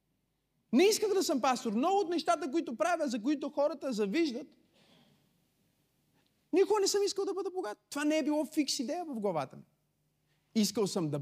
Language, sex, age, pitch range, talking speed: Bulgarian, male, 30-49, 210-295 Hz, 175 wpm